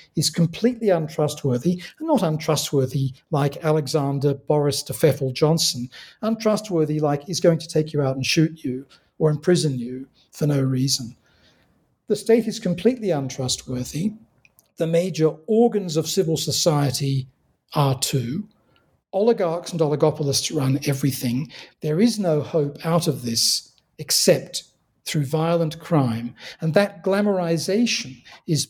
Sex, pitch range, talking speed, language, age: male, 135-175 Hz, 130 wpm, English, 50-69